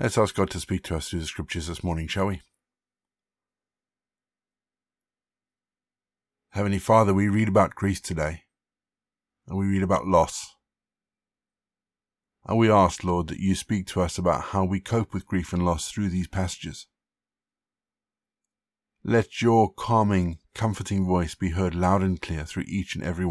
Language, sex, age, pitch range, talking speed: English, male, 50-69, 85-110 Hz, 155 wpm